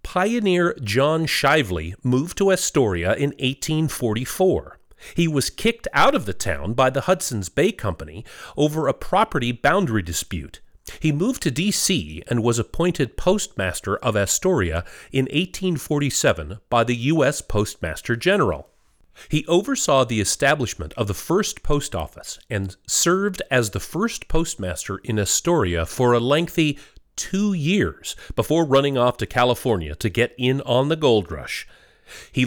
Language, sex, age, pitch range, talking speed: English, male, 40-59, 105-160 Hz, 140 wpm